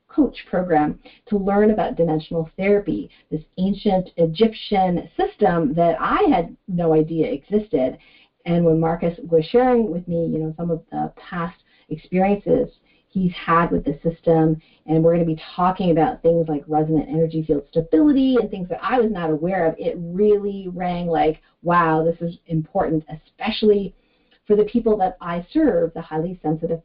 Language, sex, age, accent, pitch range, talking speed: English, female, 40-59, American, 165-225 Hz, 165 wpm